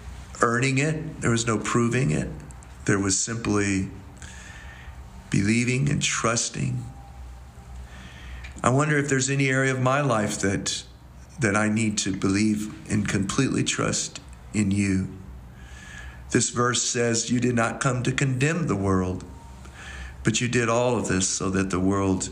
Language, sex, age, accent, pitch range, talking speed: English, male, 50-69, American, 75-115 Hz, 145 wpm